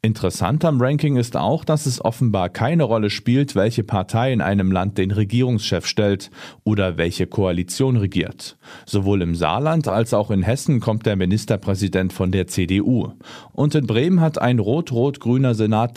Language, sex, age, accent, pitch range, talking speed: German, male, 40-59, German, 100-130 Hz, 160 wpm